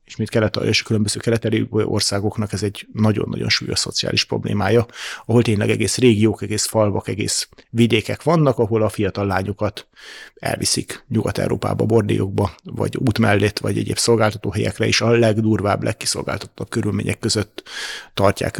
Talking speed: 140 wpm